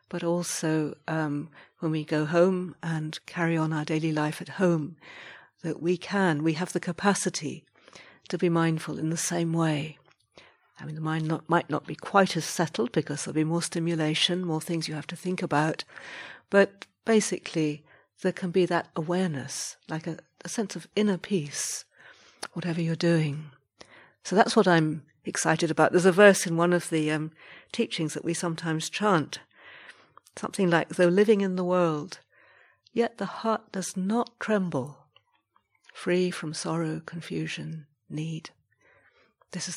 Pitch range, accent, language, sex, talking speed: 155-185 Hz, British, English, female, 160 wpm